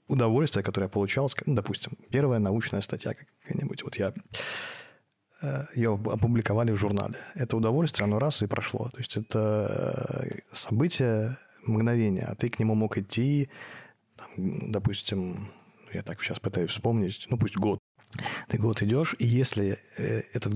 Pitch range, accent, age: 105-120 Hz, native, 20-39